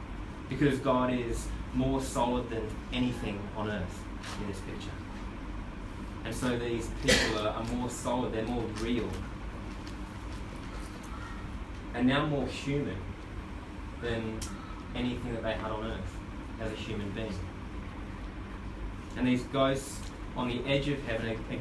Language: English